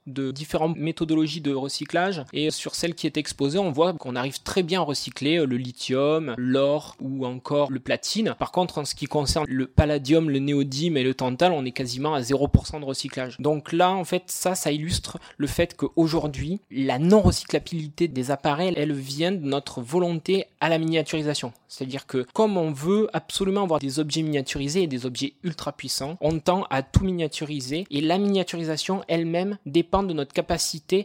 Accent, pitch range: French, 140-175 Hz